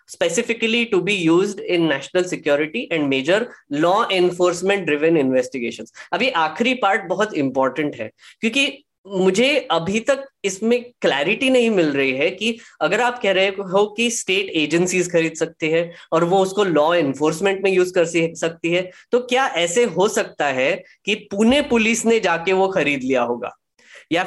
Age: 20-39